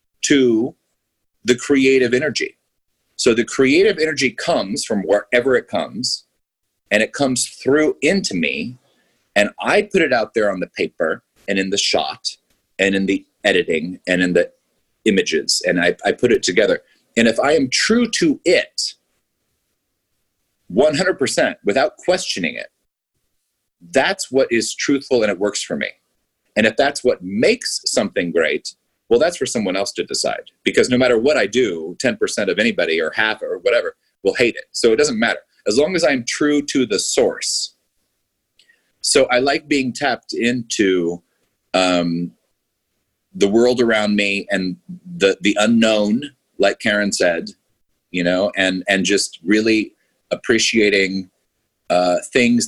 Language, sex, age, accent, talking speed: English, male, 30-49, American, 155 wpm